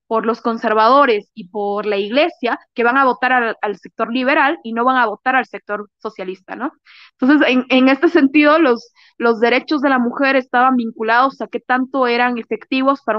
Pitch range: 230-275 Hz